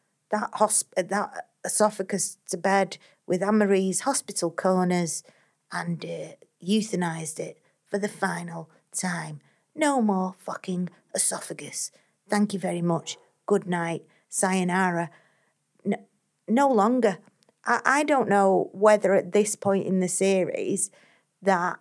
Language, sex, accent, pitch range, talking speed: English, female, British, 175-200 Hz, 120 wpm